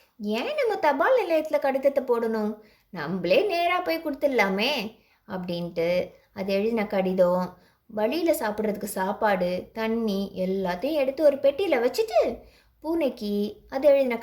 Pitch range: 210-315 Hz